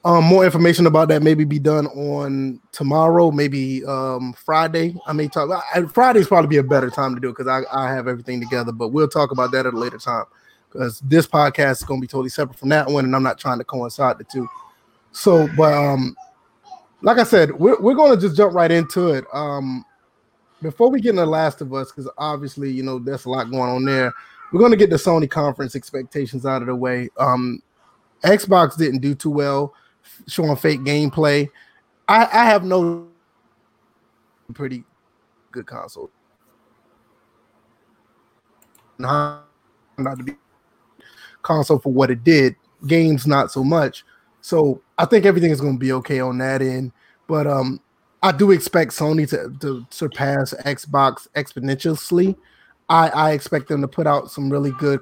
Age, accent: 20-39, American